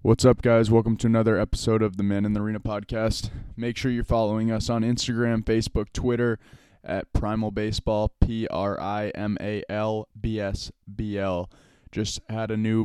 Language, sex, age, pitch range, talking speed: English, male, 20-39, 100-115 Hz, 145 wpm